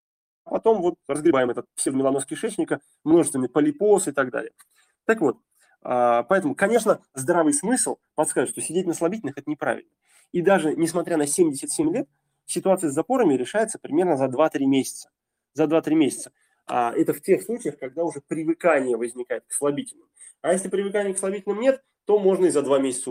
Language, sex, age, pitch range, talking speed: Russian, male, 20-39, 145-230 Hz, 165 wpm